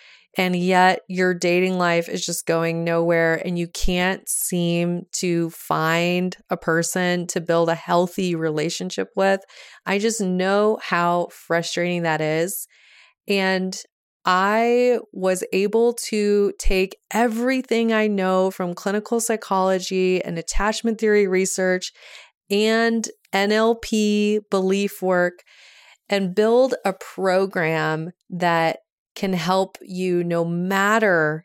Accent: American